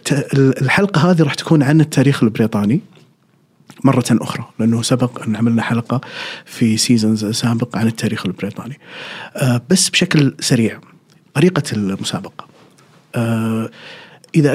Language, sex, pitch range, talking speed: Arabic, male, 120-160 Hz, 105 wpm